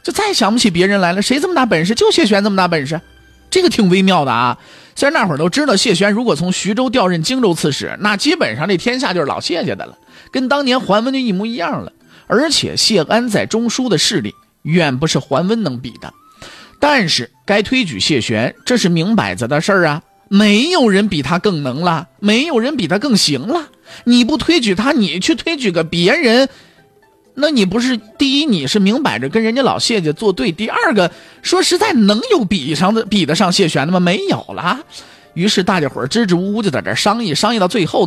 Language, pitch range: Chinese, 165-240 Hz